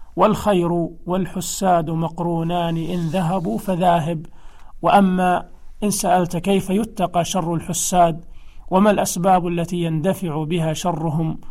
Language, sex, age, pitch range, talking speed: Arabic, male, 40-59, 160-185 Hz, 100 wpm